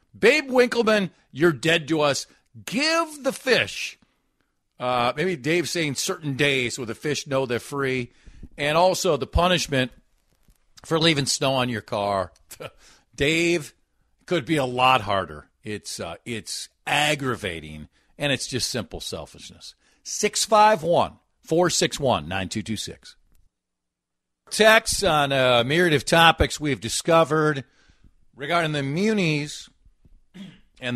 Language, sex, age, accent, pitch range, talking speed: English, male, 50-69, American, 120-175 Hz, 115 wpm